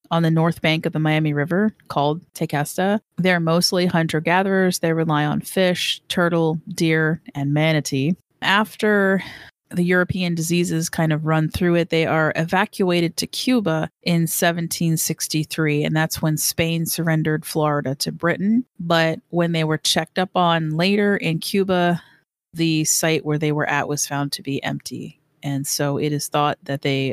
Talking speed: 165 wpm